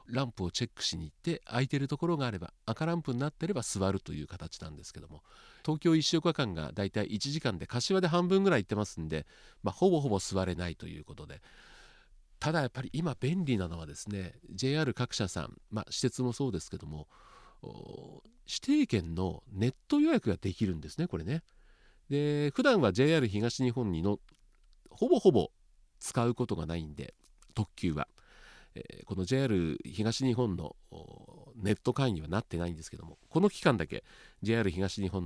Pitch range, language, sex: 90-150 Hz, Japanese, male